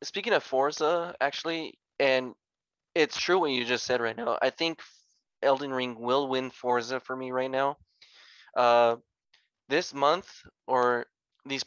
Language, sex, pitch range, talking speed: English, male, 115-130 Hz, 150 wpm